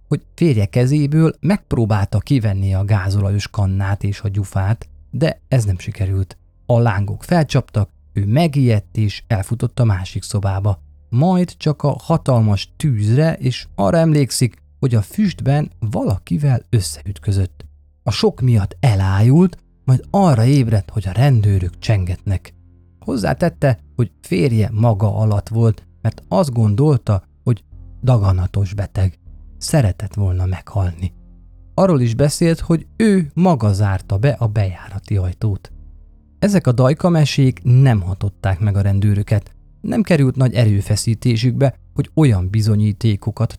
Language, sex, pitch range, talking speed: Hungarian, male, 95-130 Hz, 125 wpm